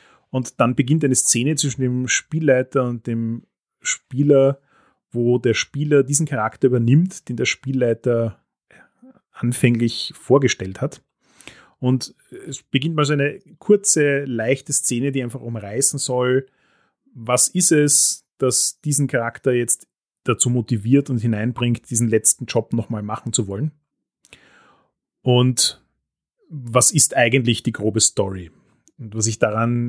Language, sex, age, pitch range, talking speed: German, male, 30-49, 120-140 Hz, 130 wpm